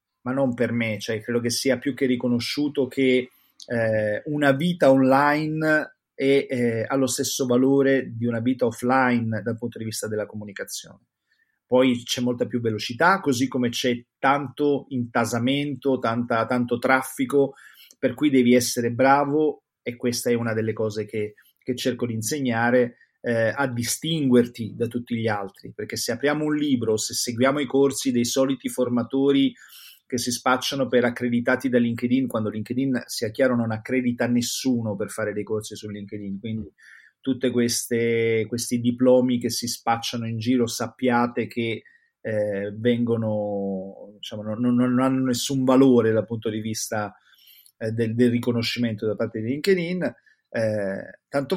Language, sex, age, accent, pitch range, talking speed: Italian, male, 30-49, native, 115-135 Hz, 155 wpm